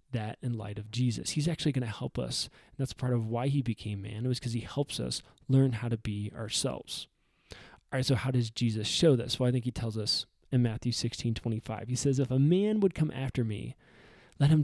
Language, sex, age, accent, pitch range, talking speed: English, male, 20-39, American, 115-145 Hz, 240 wpm